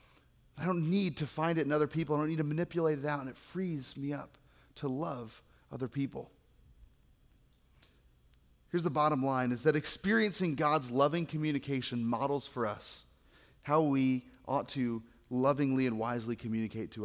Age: 30-49